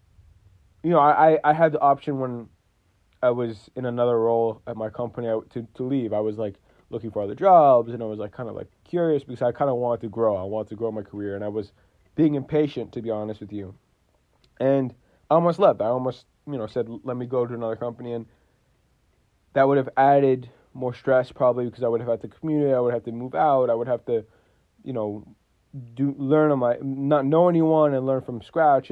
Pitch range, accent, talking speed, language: 110-145 Hz, American, 230 wpm, English